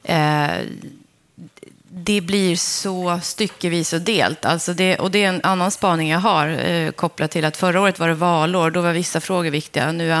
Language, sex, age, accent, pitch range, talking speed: Swedish, female, 30-49, native, 160-200 Hz, 200 wpm